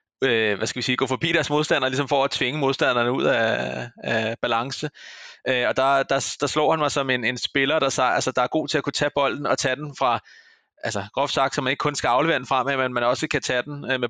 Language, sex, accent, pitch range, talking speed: Danish, male, native, 125-150 Hz, 270 wpm